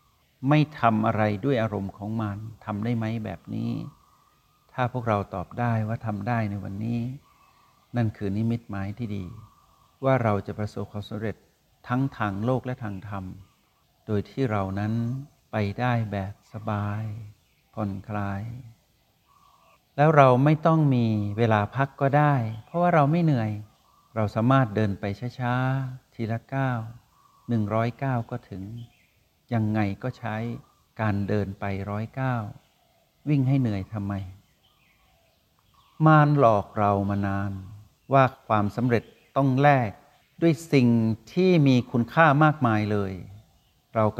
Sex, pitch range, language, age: male, 105-130 Hz, Thai, 60-79